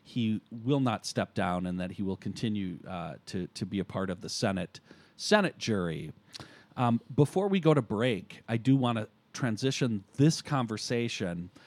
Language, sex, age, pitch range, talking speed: English, male, 40-59, 100-125 Hz, 175 wpm